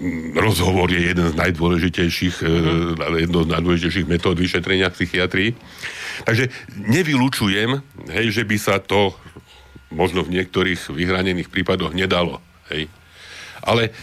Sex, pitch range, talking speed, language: male, 85-100 Hz, 110 wpm, Slovak